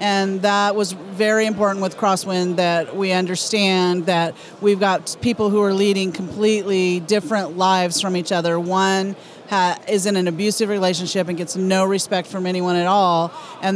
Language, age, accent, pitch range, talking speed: English, 40-59, American, 180-200 Hz, 165 wpm